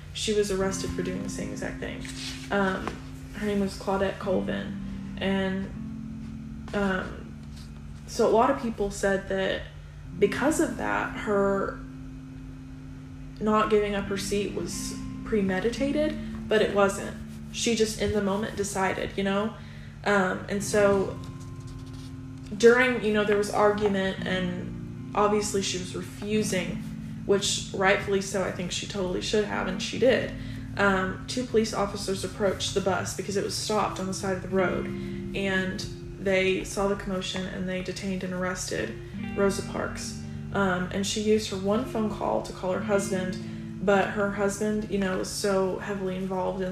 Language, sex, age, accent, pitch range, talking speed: English, female, 20-39, American, 135-200 Hz, 160 wpm